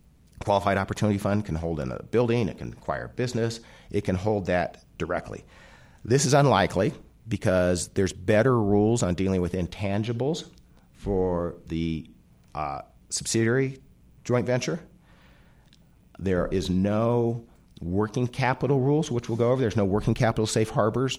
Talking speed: 140 wpm